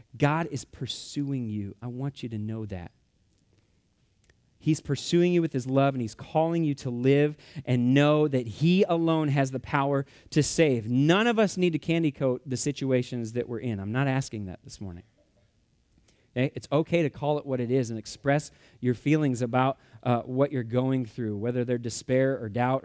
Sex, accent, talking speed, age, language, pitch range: male, American, 190 wpm, 30-49, English, 125-170 Hz